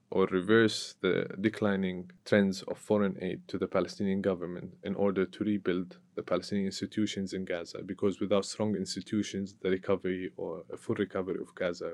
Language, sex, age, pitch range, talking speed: English, male, 20-39, 95-110 Hz, 165 wpm